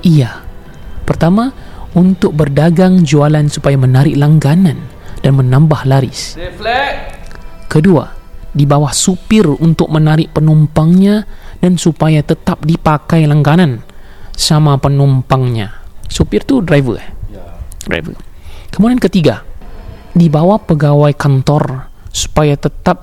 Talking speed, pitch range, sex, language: 100 wpm, 125-160 Hz, male, Malay